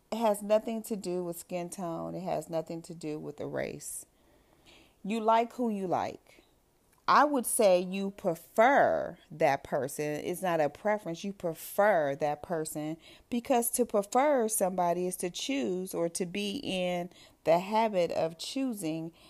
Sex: female